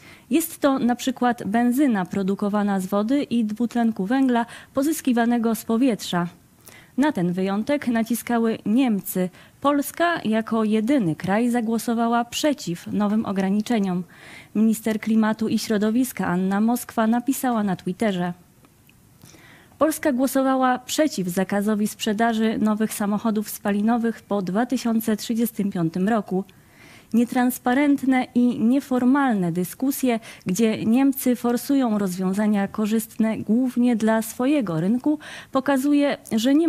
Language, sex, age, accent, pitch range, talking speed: Polish, female, 20-39, native, 200-250 Hz, 105 wpm